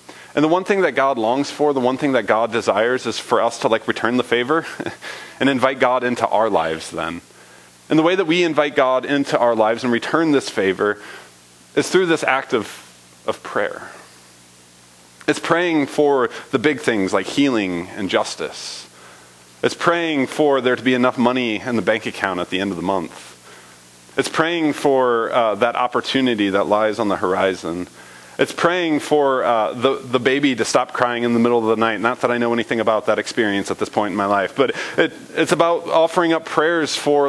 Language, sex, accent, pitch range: English, male, American, 95-155 Hz